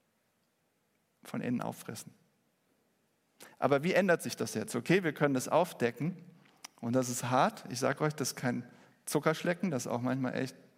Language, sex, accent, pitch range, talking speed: German, male, German, 130-175 Hz, 165 wpm